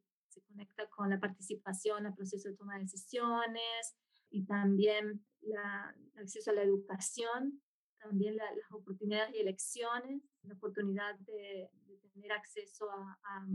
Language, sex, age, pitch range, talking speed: English, female, 20-39, 200-230 Hz, 145 wpm